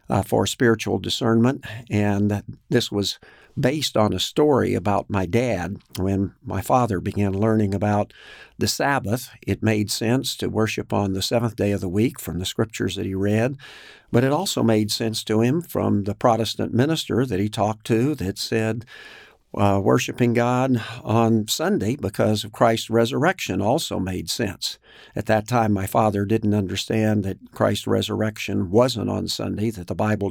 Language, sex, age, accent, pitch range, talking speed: English, male, 50-69, American, 100-120 Hz, 170 wpm